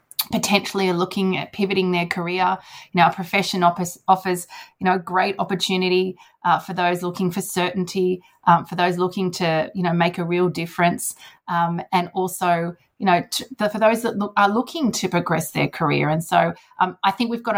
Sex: female